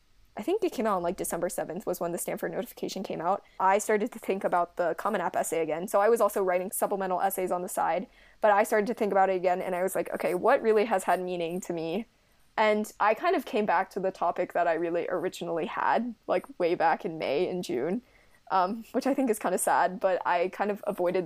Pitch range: 175-205 Hz